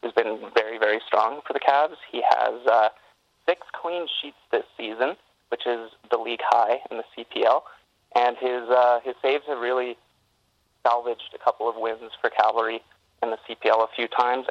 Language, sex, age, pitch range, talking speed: English, male, 30-49, 120-140 Hz, 180 wpm